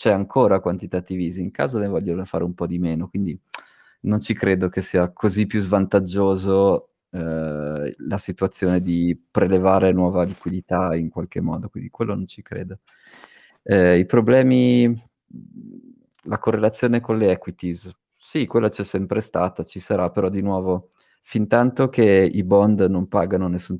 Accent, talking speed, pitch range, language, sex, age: native, 160 wpm, 90-105 Hz, Italian, male, 30-49